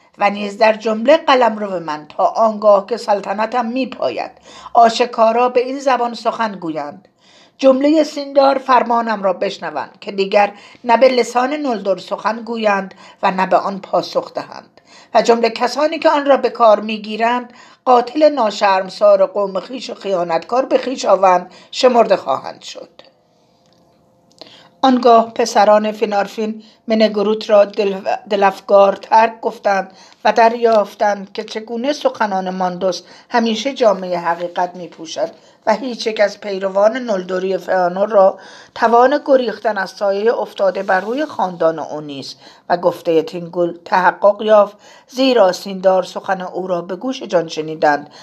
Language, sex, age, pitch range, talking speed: Persian, female, 50-69, 185-235 Hz, 135 wpm